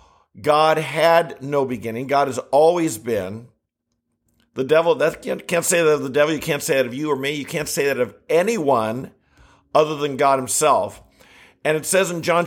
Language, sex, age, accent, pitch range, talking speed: English, male, 50-69, American, 135-160 Hz, 190 wpm